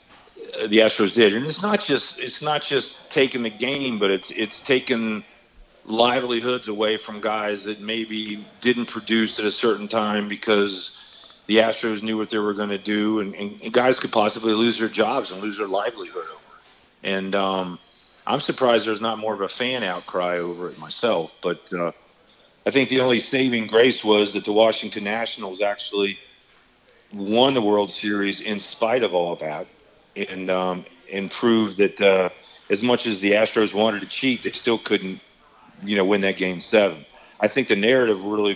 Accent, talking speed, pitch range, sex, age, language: American, 185 wpm, 100-115 Hz, male, 40-59, English